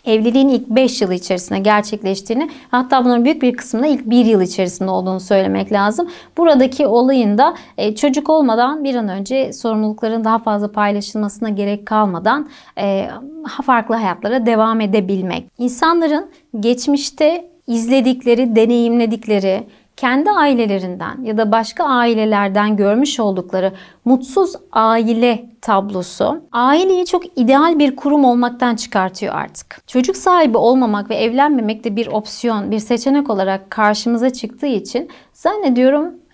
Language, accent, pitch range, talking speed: Turkish, native, 210-265 Hz, 120 wpm